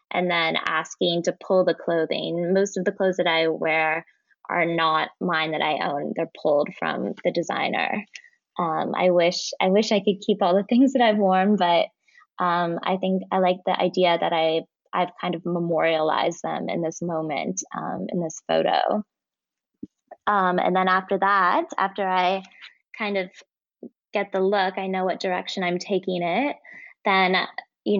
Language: English